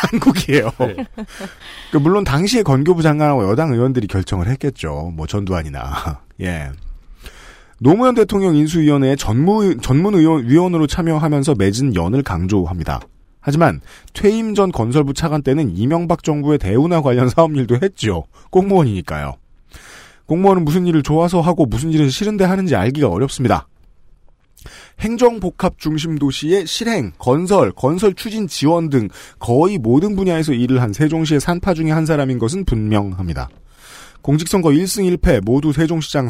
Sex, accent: male, native